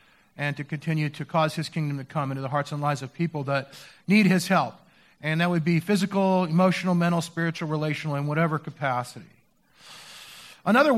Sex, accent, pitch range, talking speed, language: male, American, 170-210 Hz, 180 wpm, English